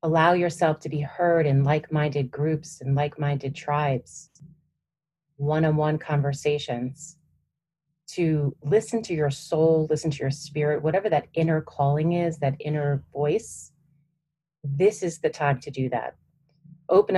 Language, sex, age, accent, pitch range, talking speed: English, female, 30-49, American, 145-160 Hz, 135 wpm